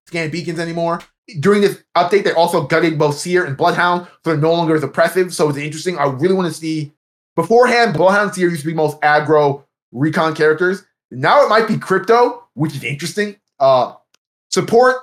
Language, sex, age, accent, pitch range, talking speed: English, male, 20-39, American, 150-180 Hz, 190 wpm